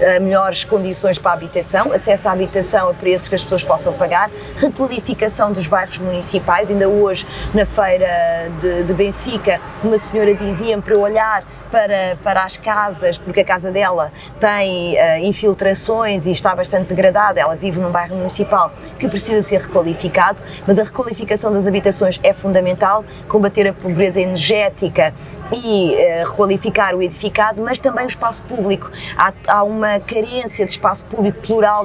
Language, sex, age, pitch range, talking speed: Portuguese, female, 20-39, 185-215 Hz, 155 wpm